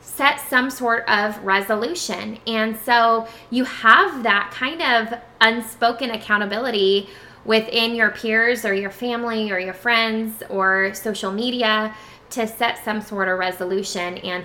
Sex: female